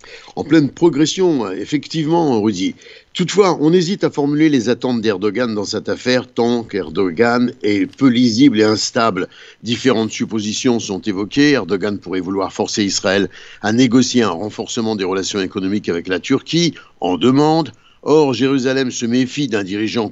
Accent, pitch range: French, 110-155 Hz